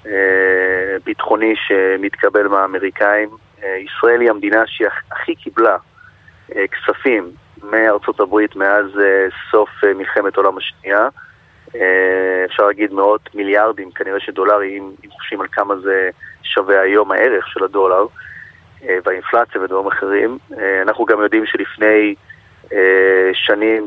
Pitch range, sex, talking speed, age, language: 95-110 Hz, male, 105 wpm, 30-49, Hebrew